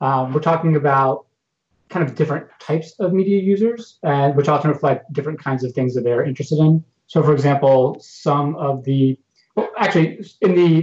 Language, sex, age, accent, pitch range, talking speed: English, male, 30-49, American, 125-150 Hz, 190 wpm